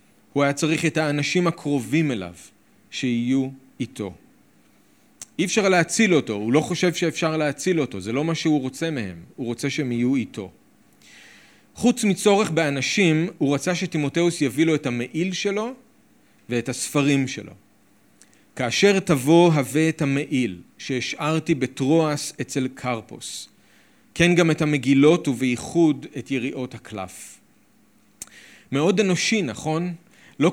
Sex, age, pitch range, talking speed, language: male, 40-59, 120-155 Hz, 130 wpm, Hebrew